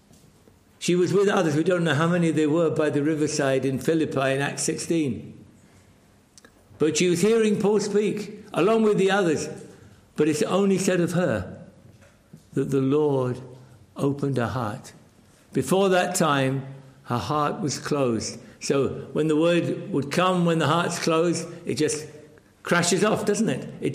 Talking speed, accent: 165 wpm, British